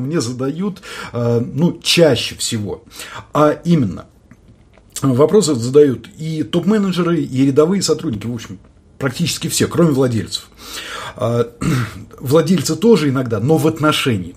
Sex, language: male, English